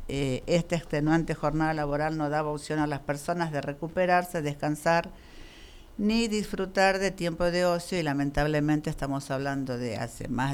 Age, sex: 50-69, female